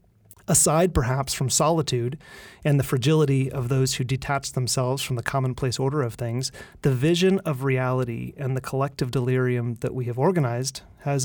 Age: 30-49